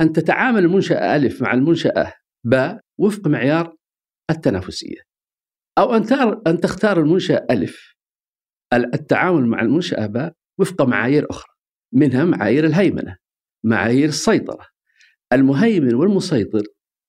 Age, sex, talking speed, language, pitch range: 50-69, male, 105 wpm, Arabic, 135-215 Hz